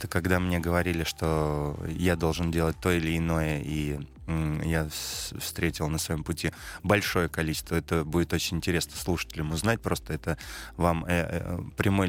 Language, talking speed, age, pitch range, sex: Russian, 140 wpm, 20-39, 75-90 Hz, male